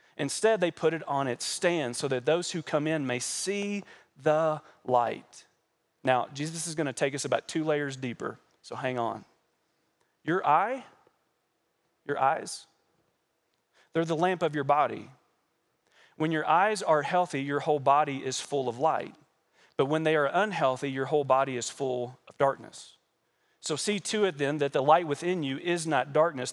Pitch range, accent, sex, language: 140-165 Hz, American, male, English